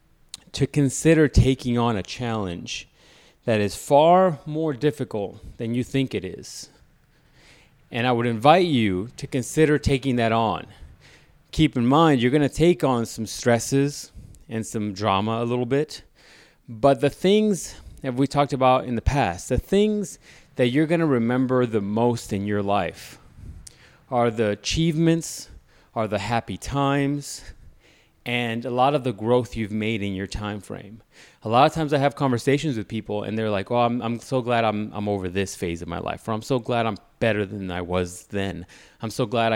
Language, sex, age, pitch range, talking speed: English, male, 30-49, 105-140 Hz, 180 wpm